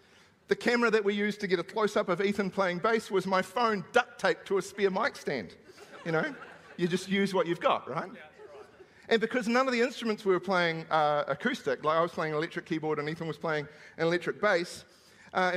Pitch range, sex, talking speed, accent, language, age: 180-230 Hz, male, 225 wpm, Australian, English, 40-59